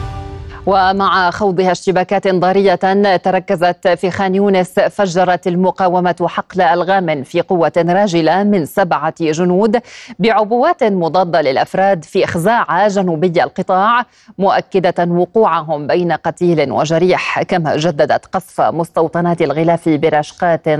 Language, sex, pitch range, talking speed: Arabic, female, 160-190 Hz, 105 wpm